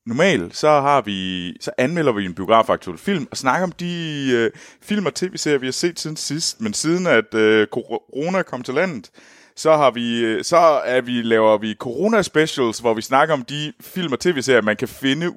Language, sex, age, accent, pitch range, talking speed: Danish, male, 30-49, native, 110-160 Hz, 205 wpm